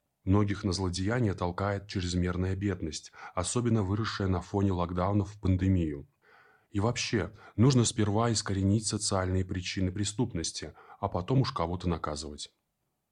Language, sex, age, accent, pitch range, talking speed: Russian, male, 20-39, native, 95-120 Hz, 120 wpm